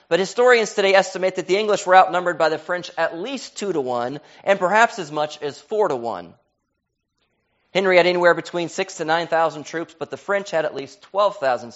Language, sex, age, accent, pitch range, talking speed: English, male, 30-49, American, 130-180 Hz, 205 wpm